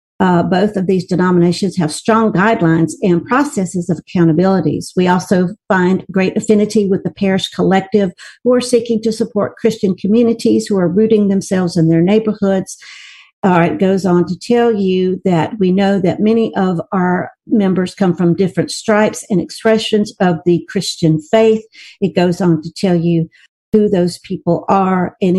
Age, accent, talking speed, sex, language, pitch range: 60-79, American, 170 wpm, female, English, 175-210 Hz